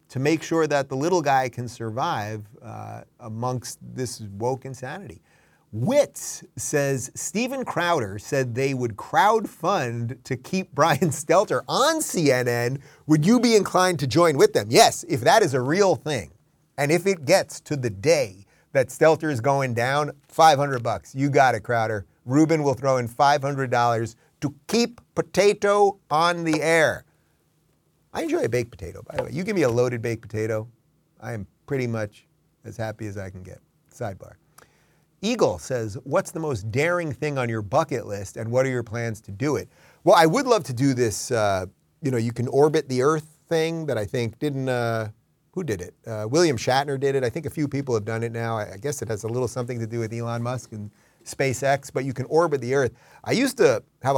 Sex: male